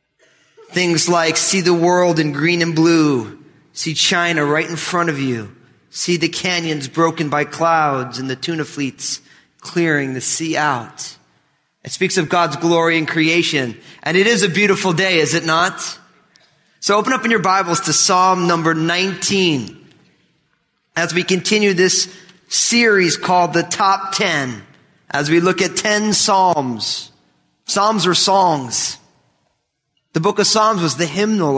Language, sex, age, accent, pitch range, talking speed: English, male, 30-49, American, 155-190 Hz, 155 wpm